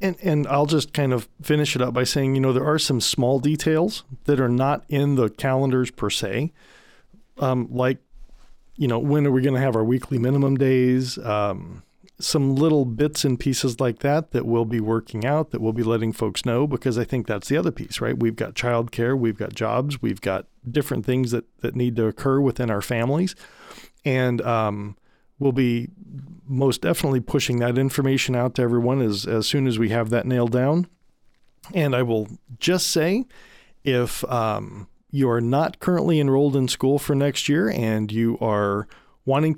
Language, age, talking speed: English, 40-59, 195 wpm